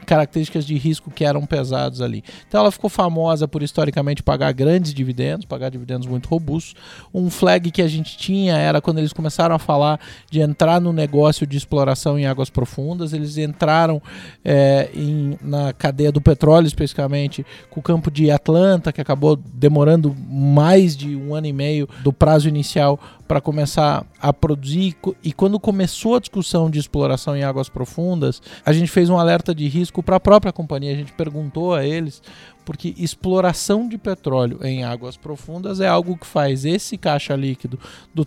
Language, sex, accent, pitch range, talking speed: Portuguese, male, Brazilian, 145-170 Hz, 170 wpm